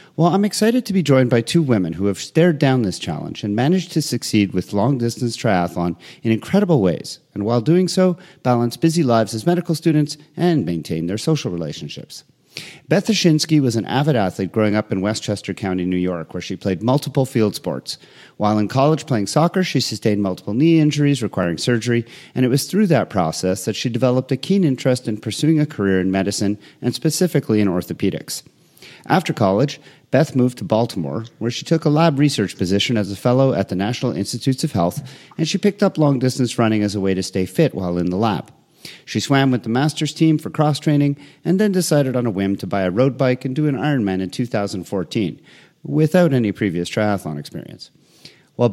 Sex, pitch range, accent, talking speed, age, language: male, 100-155 Hz, American, 200 wpm, 40-59, English